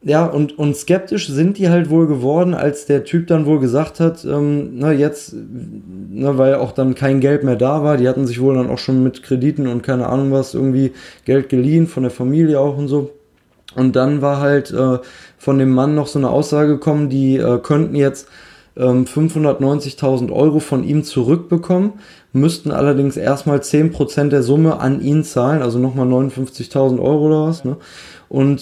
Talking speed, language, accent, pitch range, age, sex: 185 wpm, German, German, 130-150 Hz, 20-39, male